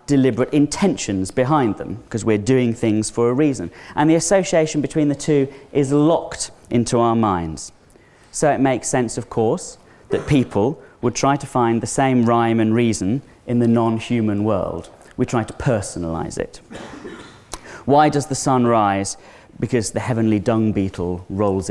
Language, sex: English, male